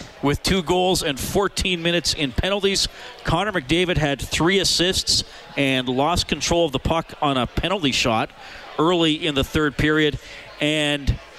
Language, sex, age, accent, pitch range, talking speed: English, male, 40-59, American, 130-165 Hz, 155 wpm